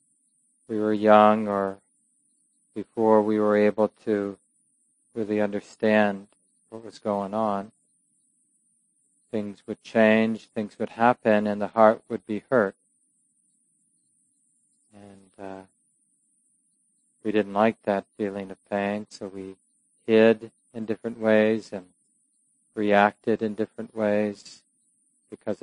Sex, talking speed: male, 110 wpm